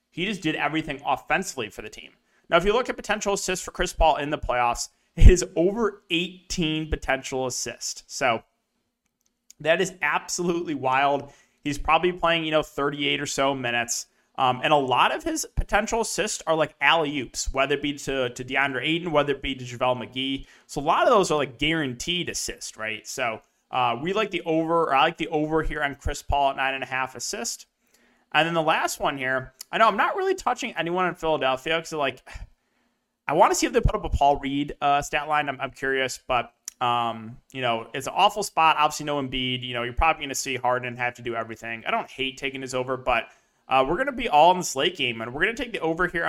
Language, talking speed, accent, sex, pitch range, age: English, 225 wpm, American, male, 130-170 Hz, 30-49